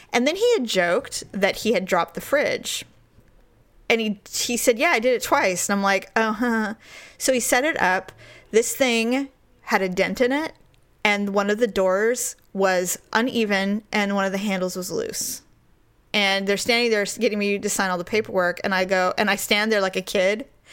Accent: American